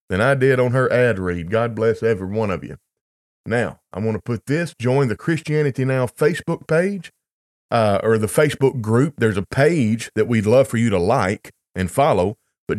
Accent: American